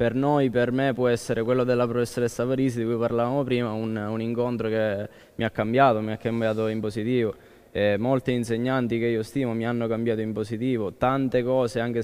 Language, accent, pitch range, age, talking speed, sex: Italian, native, 110-125 Hz, 20-39, 200 wpm, male